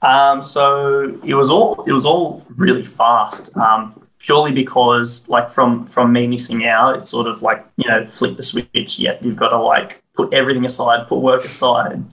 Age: 20-39